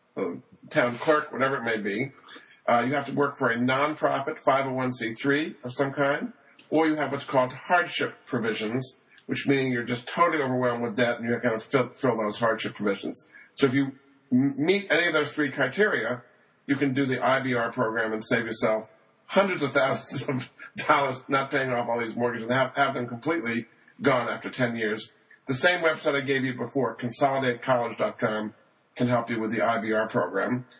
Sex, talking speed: male, 185 wpm